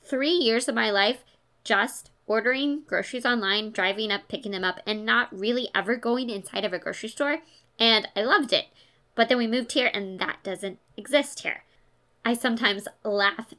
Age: 20-39